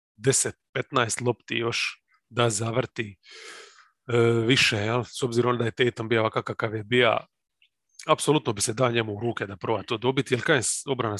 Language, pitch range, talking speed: English, 115-135 Hz, 170 wpm